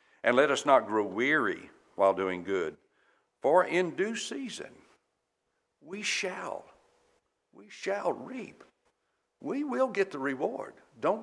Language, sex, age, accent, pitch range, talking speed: English, male, 60-79, American, 120-185 Hz, 130 wpm